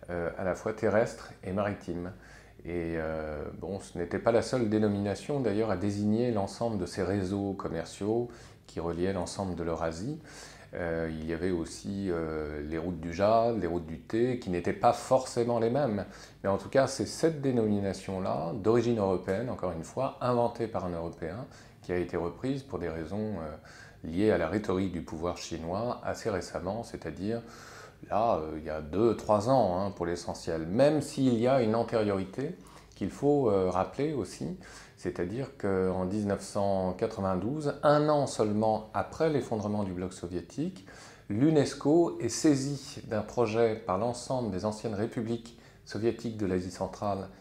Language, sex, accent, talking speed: French, male, French, 160 wpm